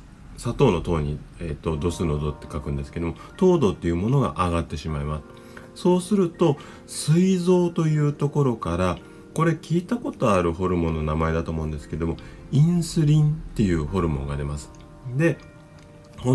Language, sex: Japanese, male